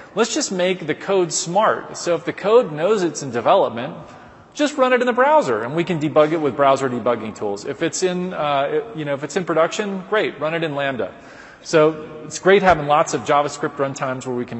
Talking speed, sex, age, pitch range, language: 225 wpm, male, 30-49, 125-165 Hz, English